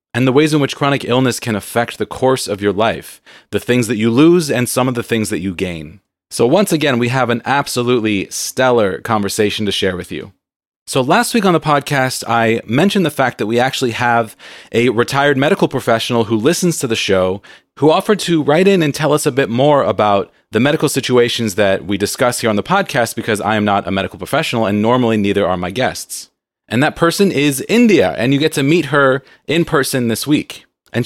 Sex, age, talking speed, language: male, 30-49, 220 wpm, English